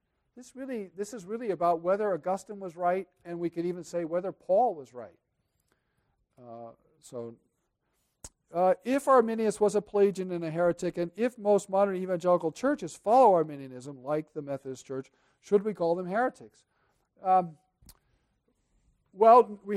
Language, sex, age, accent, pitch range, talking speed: English, male, 50-69, American, 155-205 Hz, 150 wpm